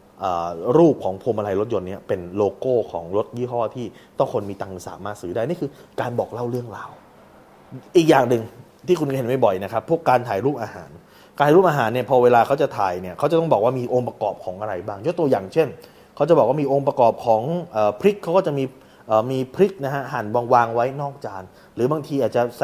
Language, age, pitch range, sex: Thai, 20-39, 110-140 Hz, male